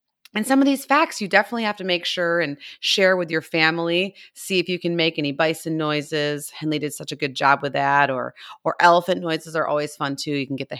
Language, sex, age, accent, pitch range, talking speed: English, female, 30-49, American, 140-180 Hz, 245 wpm